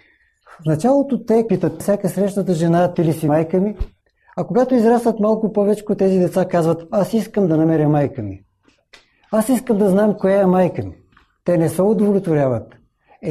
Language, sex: Bulgarian, male